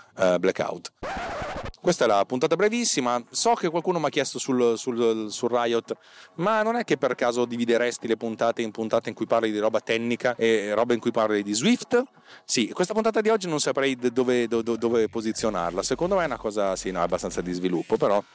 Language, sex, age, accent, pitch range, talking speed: Italian, male, 30-49, native, 105-155 Hz, 215 wpm